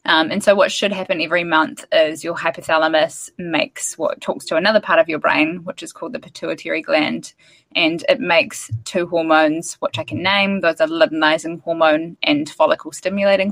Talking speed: 185 wpm